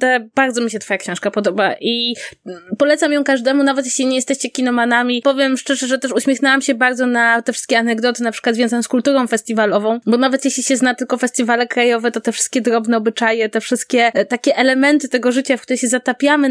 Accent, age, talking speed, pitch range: native, 20-39, 200 wpm, 220-255 Hz